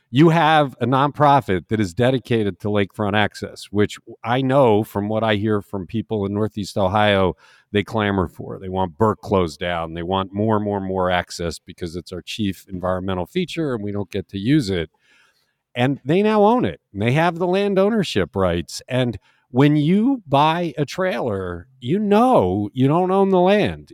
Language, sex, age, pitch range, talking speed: English, male, 50-69, 100-155 Hz, 190 wpm